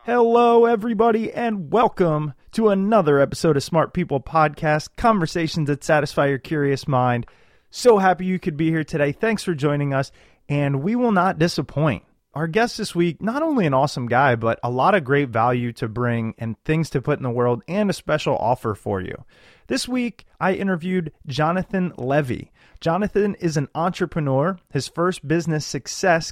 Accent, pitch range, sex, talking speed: American, 130-185 Hz, male, 175 wpm